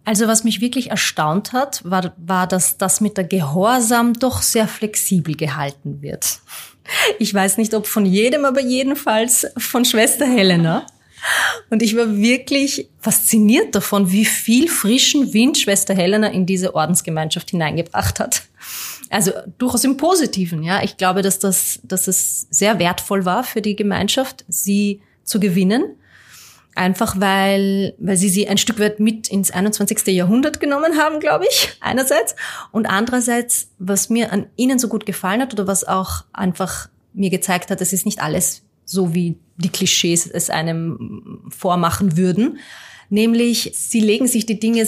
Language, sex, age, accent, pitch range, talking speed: German, female, 30-49, German, 190-230 Hz, 160 wpm